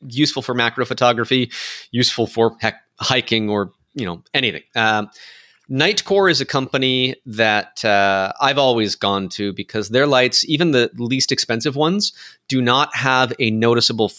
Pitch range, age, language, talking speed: 110-140 Hz, 30-49, English, 150 wpm